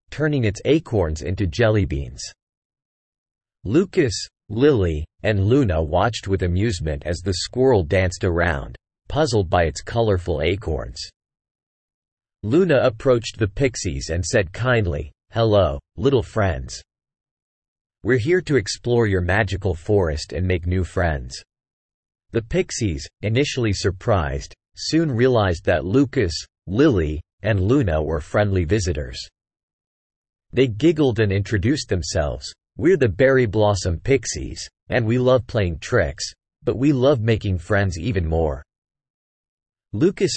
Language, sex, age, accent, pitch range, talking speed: English, male, 40-59, American, 85-120 Hz, 120 wpm